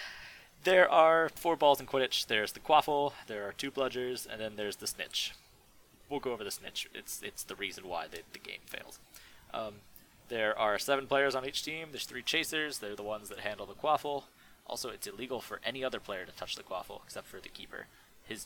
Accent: American